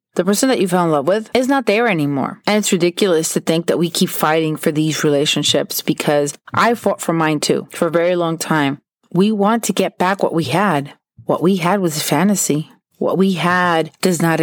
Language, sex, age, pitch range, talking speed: English, female, 30-49, 160-190 Hz, 225 wpm